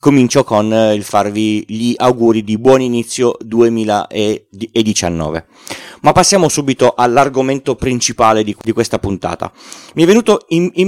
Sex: male